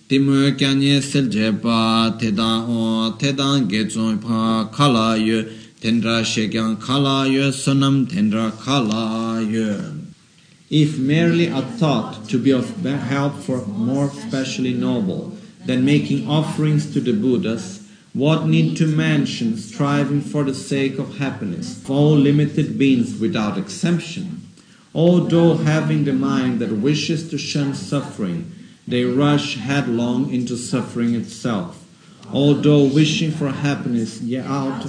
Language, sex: Italian, male